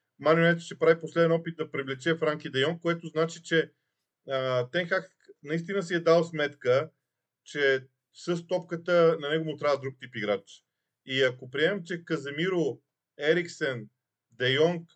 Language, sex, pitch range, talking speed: Bulgarian, male, 135-165 Hz, 145 wpm